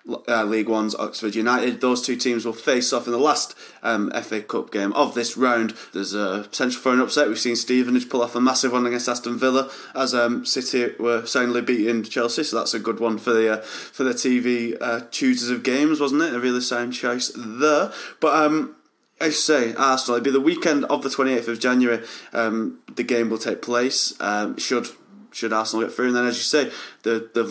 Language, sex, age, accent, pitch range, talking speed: English, male, 20-39, British, 110-125 Hz, 220 wpm